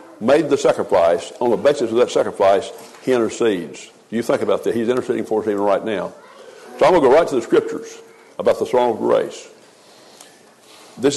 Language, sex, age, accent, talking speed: English, male, 60-79, American, 200 wpm